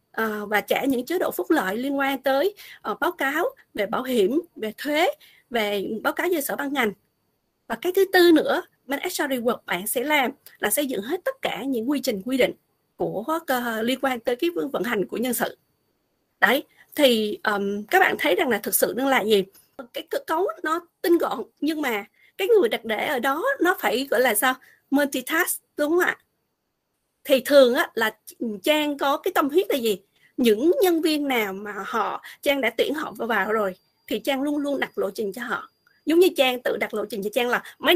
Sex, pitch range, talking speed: female, 230-320 Hz, 215 wpm